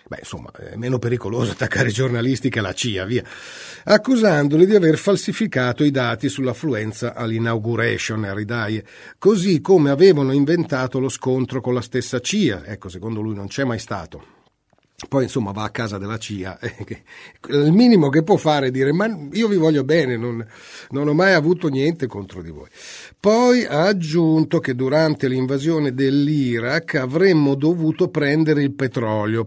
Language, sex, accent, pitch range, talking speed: Italian, male, native, 115-145 Hz, 160 wpm